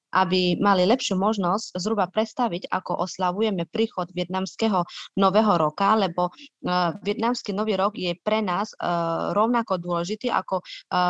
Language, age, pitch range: Slovak, 20-39, 175-200 Hz